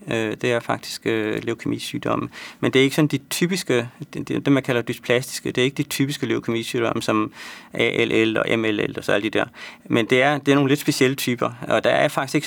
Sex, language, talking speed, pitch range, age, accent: male, Danish, 220 wpm, 115-140 Hz, 30-49, native